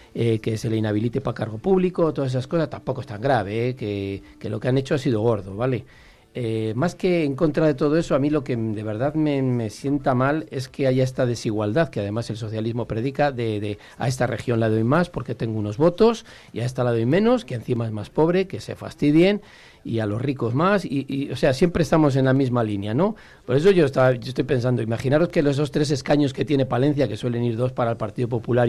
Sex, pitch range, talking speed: male, 115-150 Hz, 250 wpm